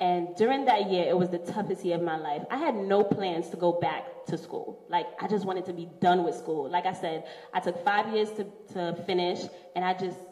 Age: 20-39